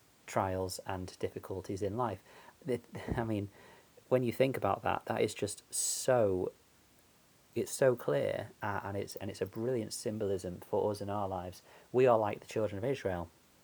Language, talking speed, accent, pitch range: English, 165 wpm, British, 95-110 Hz